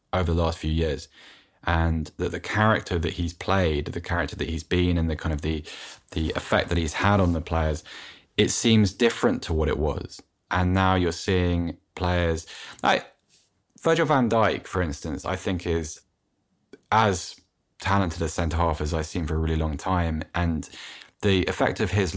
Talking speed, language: 185 wpm, English